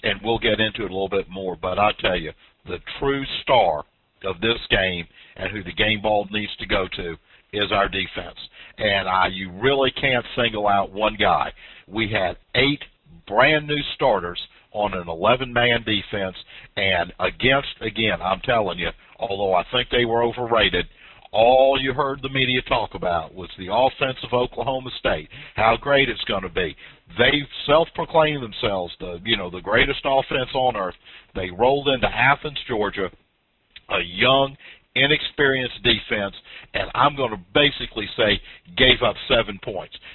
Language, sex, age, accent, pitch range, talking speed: English, male, 50-69, American, 100-130 Hz, 165 wpm